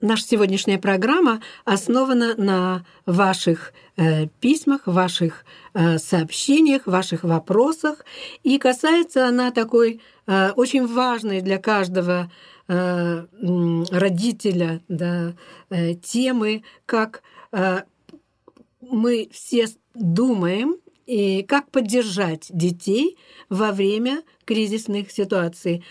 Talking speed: 75 wpm